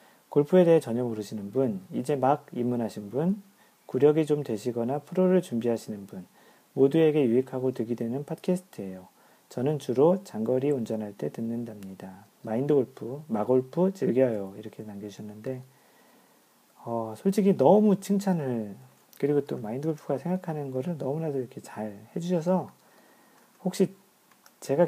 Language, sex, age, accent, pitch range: Korean, male, 40-59, native, 120-175 Hz